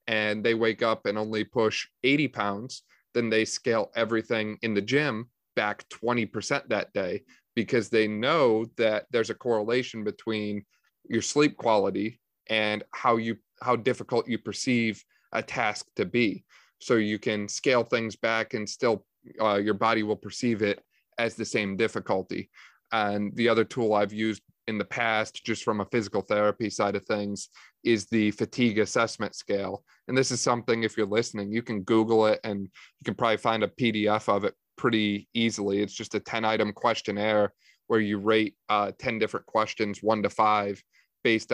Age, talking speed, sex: 30-49, 175 wpm, male